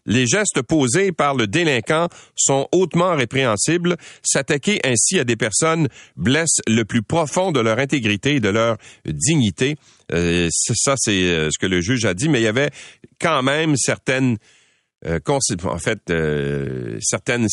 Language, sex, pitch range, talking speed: French, male, 95-140 Hz, 155 wpm